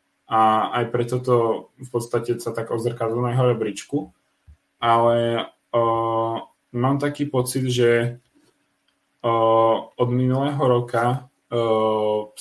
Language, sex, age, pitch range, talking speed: Czech, male, 10-29, 115-125 Hz, 110 wpm